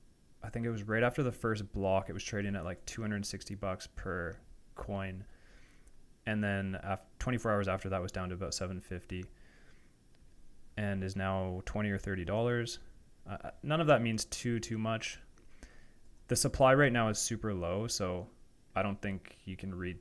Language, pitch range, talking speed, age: English, 95-115 Hz, 175 wpm, 20-39